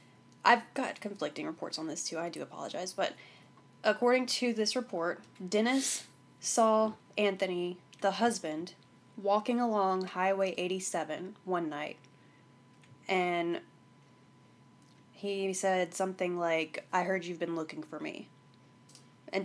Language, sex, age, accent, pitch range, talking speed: English, female, 20-39, American, 165-225 Hz, 120 wpm